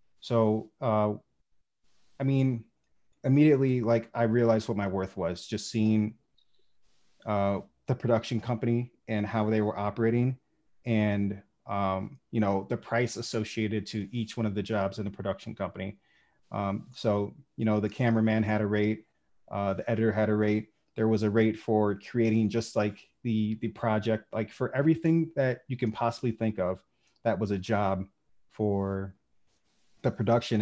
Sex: male